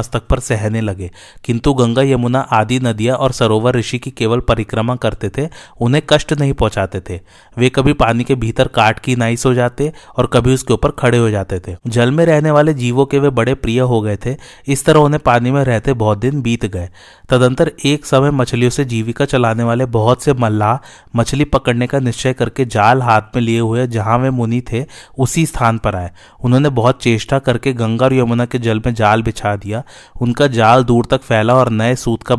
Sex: male